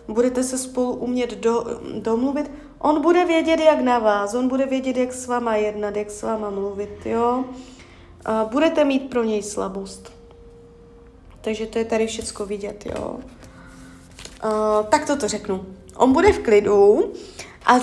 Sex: female